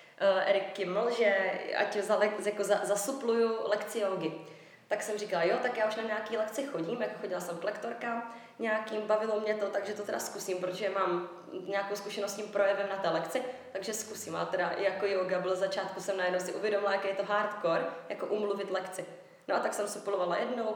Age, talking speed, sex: 20-39, 190 wpm, female